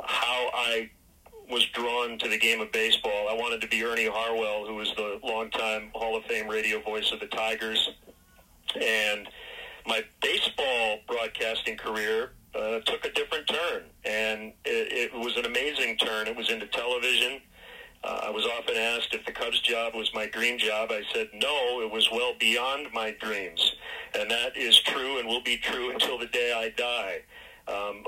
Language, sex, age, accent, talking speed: English, male, 40-59, American, 180 wpm